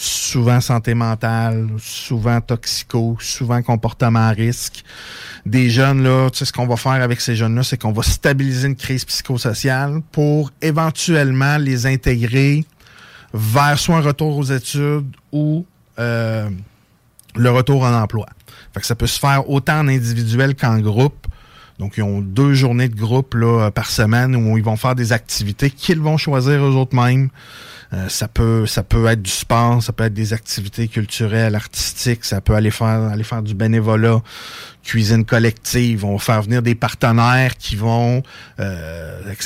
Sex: male